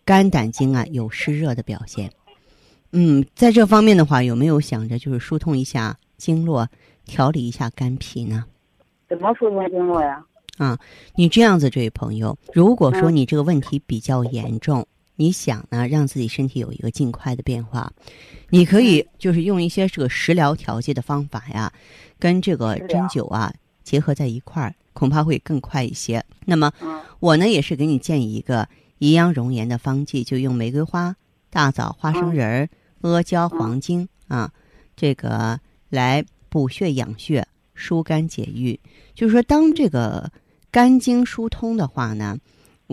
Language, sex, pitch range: Chinese, female, 120-165 Hz